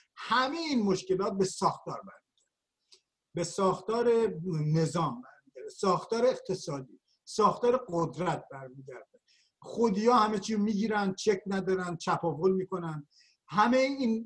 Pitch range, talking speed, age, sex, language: 185-235 Hz, 110 wpm, 50-69, male, Persian